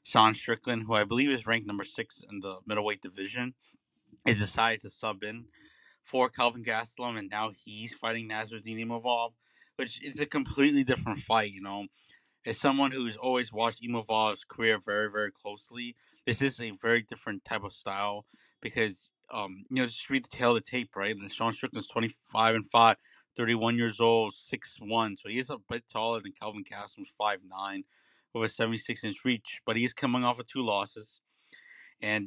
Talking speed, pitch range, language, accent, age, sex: 185 wpm, 105-120 Hz, English, American, 20-39, male